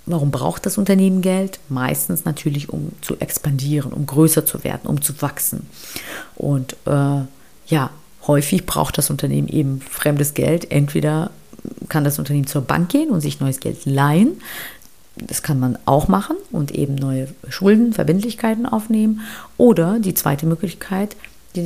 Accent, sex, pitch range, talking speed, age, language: German, female, 145-190 Hz, 150 wpm, 40-59, German